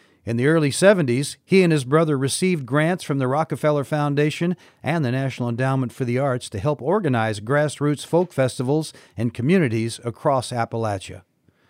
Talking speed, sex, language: 160 wpm, male, English